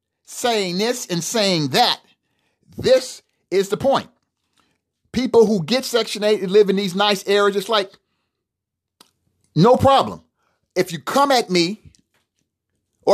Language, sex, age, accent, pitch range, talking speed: English, male, 40-59, American, 180-260 Hz, 130 wpm